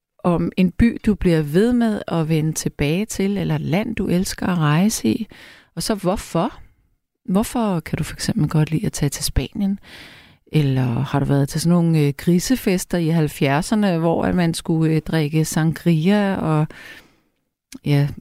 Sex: female